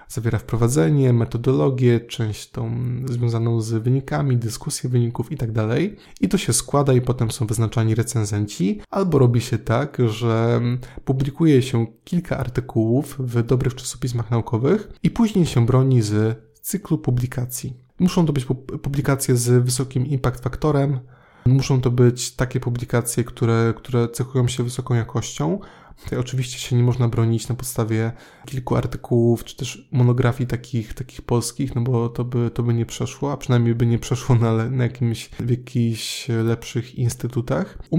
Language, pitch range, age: Polish, 120-135 Hz, 20-39